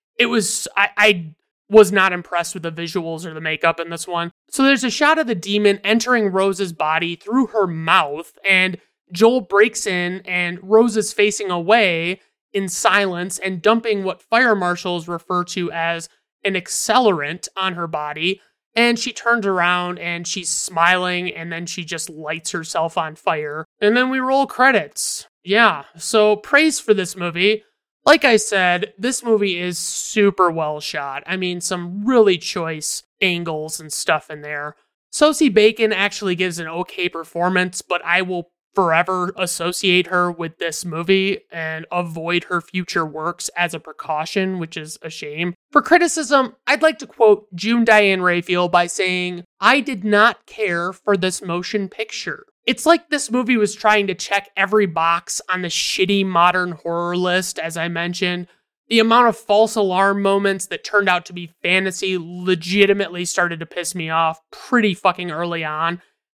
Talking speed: 170 wpm